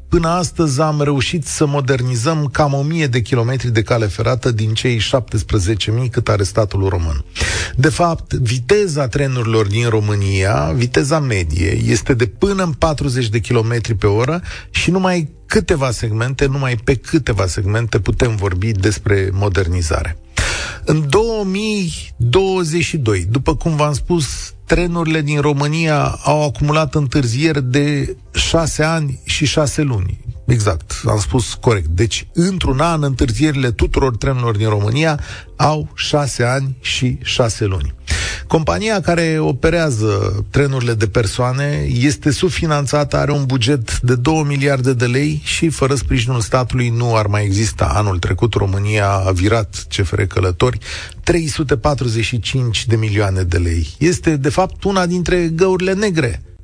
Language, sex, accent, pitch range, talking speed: Romanian, male, native, 105-155 Hz, 135 wpm